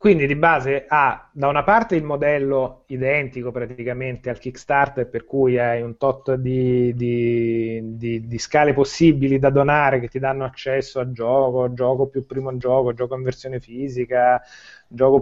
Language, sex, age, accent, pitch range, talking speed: Italian, male, 30-49, native, 125-145 Hz, 165 wpm